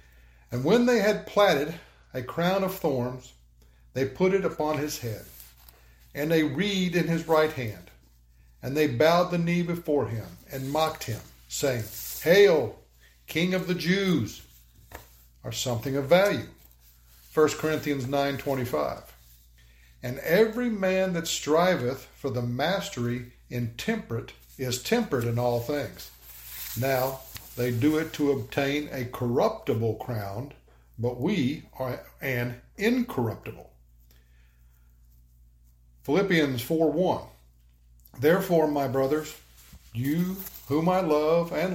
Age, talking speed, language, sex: 60-79, 120 wpm, English, male